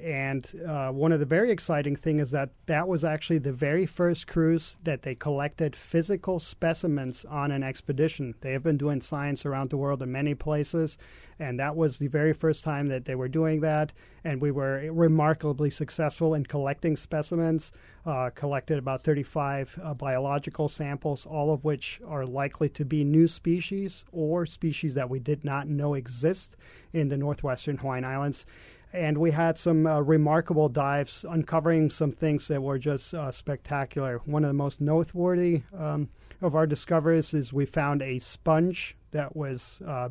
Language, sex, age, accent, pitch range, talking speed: English, male, 40-59, American, 140-160 Hz, 175 wpm